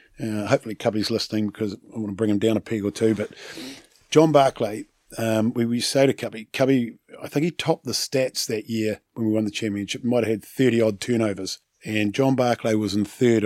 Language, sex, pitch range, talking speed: English, male, 105-125 Hz, 225 wpm